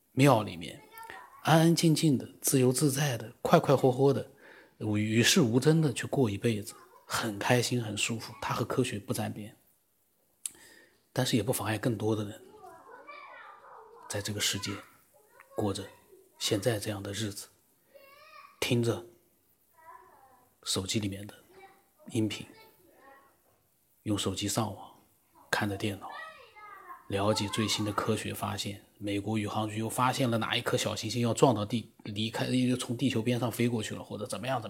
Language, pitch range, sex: Chinese, 110-150 Hz, male